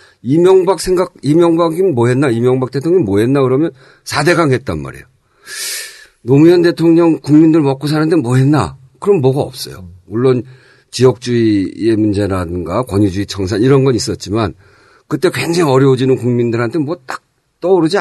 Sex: male